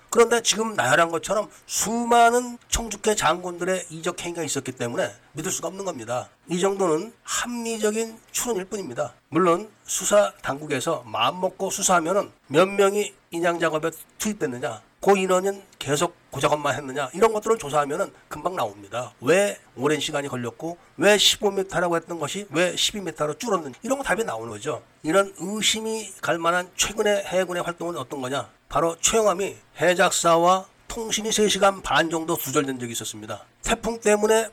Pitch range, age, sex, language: 155-210 Hz, 40-59, male, Korean